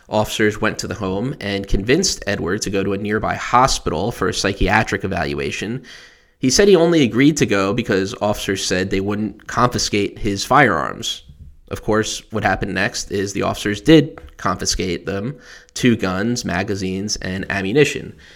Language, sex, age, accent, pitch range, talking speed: English, male, 20-39, American, 95-120 Hz, 160 wpm